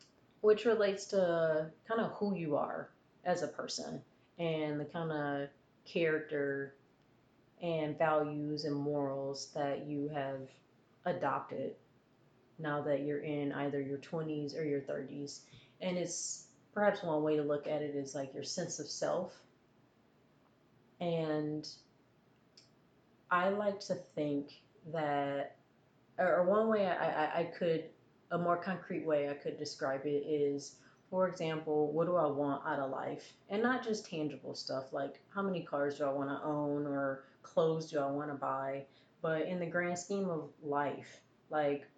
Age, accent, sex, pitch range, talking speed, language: 30-49, American, female, 140-170 Hz, 155 wpm, English